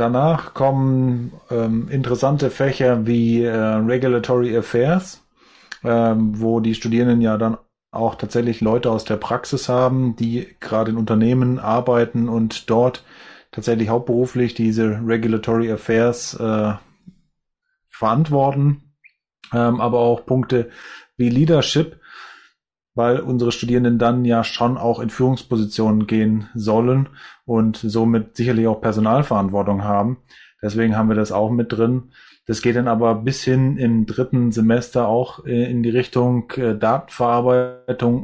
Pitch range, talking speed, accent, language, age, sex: 115-125 Hz, 125 wpm, German, German, 30-49, male